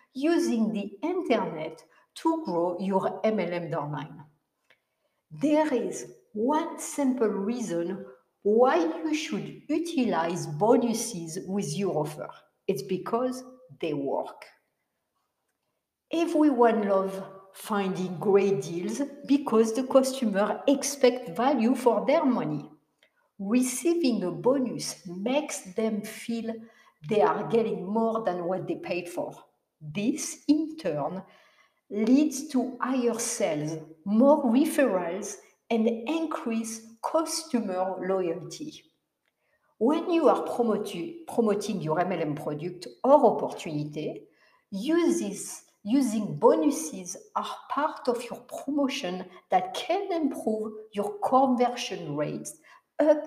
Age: 60-79